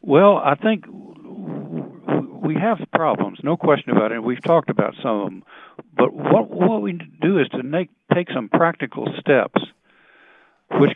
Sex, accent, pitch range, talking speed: male, American, 120-150 Hz, 155 wpm